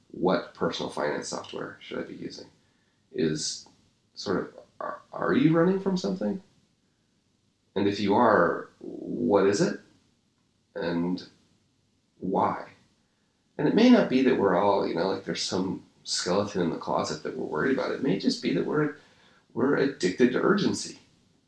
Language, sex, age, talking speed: English, male, 40-59, 160 wpm